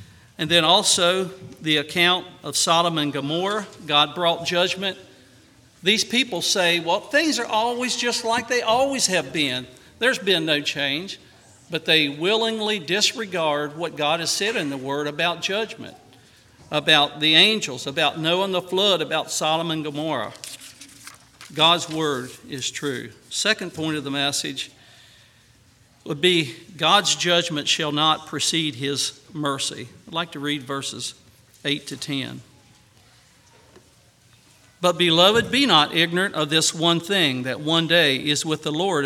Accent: American